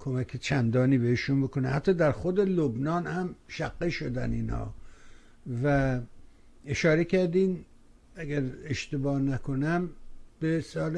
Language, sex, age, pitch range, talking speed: Persian, male, 60-79, 130-155 Hz, 110 wpm